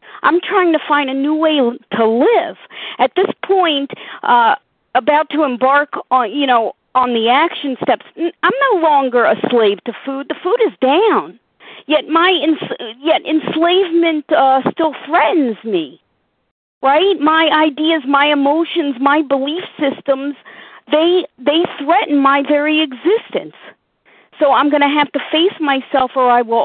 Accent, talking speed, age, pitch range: American, 150 wpm, 40-59, 255-320 Hz